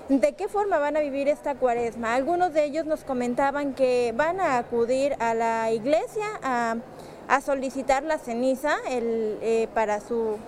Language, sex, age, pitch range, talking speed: Spanish, female, 20-39, 255-300 Hz, 165 wpm